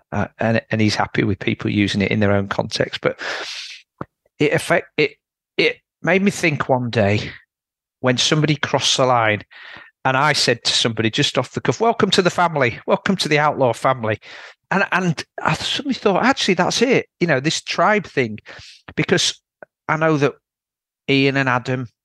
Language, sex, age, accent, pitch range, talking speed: English, male, 40-59, British, 110-145 Hz, 180 wpm